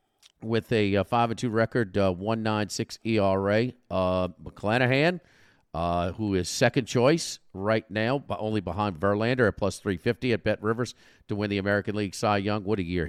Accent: American